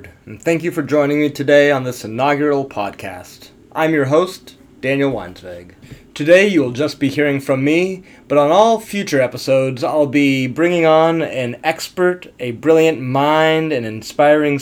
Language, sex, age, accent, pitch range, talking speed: English, male, 30-49, American, 130-160 Hz, 165 wpm